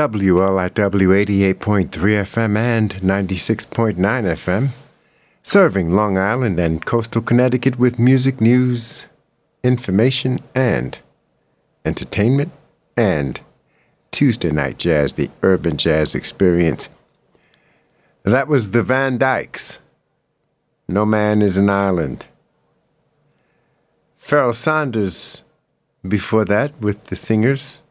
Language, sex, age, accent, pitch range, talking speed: English, male, 60-79, American, 100-130 Hz, 100 wpm